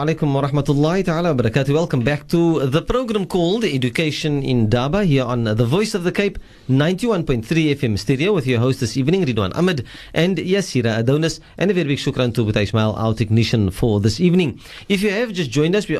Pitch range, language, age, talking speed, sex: 125-175 Hz, English, 40-59, 180 wpm, male